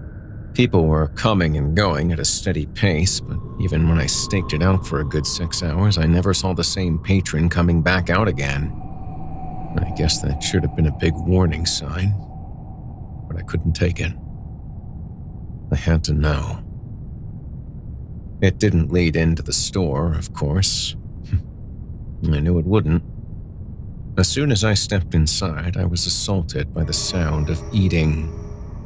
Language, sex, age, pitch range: English, male, 50-69, 80-95 Hz